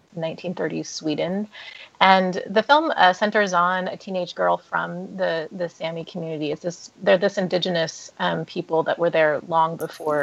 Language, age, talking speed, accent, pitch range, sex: English, 30-49, 165 wpm, American, 170-190 Hz, female